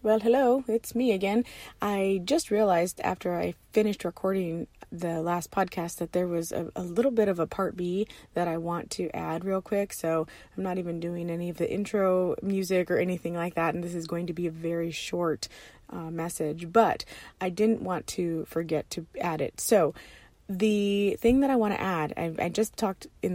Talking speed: 205 wpm